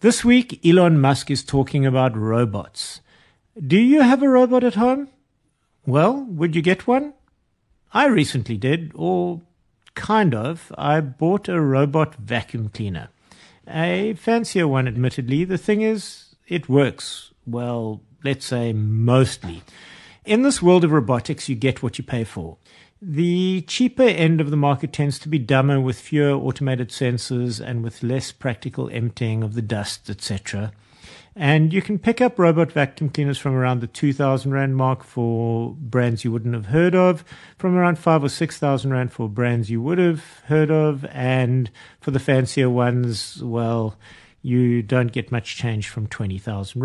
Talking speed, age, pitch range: 165 wpm, 50-69, 120-165 Hz